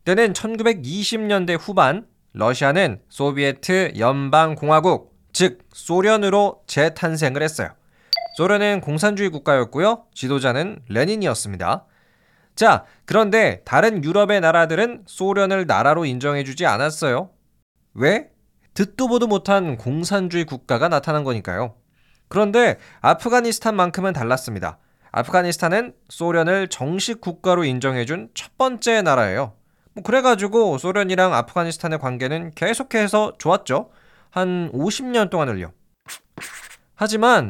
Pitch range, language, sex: 140-210 Hz, Korean, male